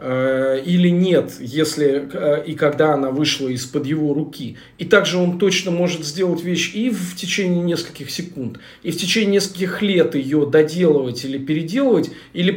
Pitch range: 140-180 Hz